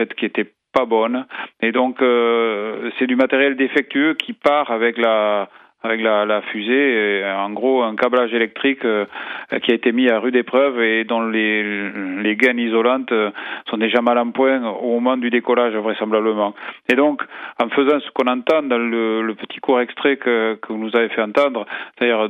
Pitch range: 110-125 Hz